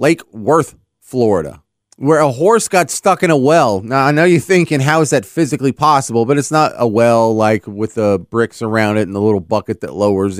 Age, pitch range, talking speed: 30-49, 115-145 Hz, 220 wpm